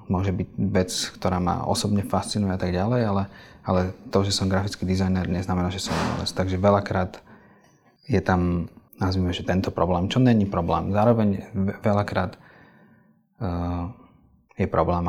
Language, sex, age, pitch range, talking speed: Slovak, male, 30-49, 90-100 Hz, 145 wpm